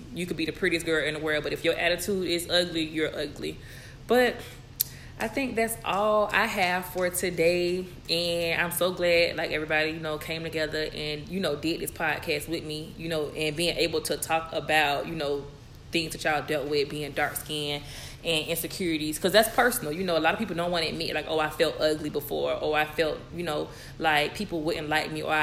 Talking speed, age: 220 wpm, 20-39